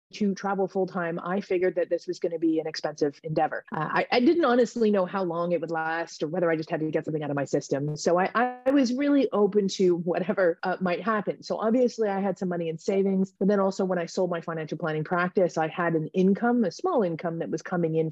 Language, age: English, 30-49